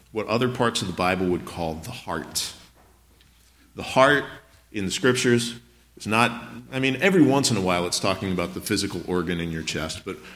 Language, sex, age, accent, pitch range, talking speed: English, male, 40-59, American, 90-115 Hz, 195 wpm